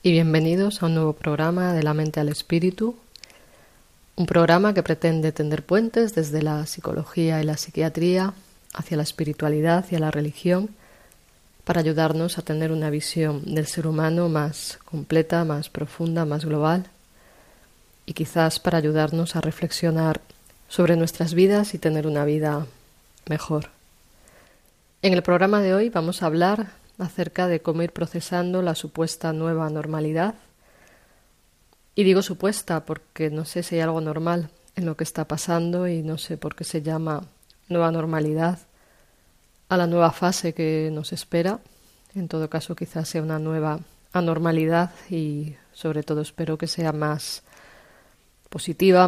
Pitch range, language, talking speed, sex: 155-175 Hz, Spanish, 150 wpm, female